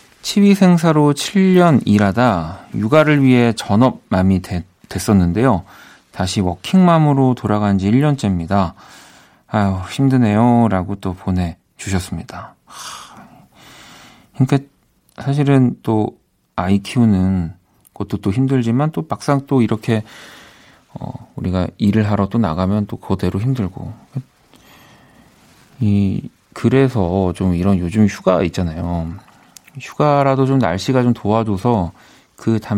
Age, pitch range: 40-59, 95-130 Hz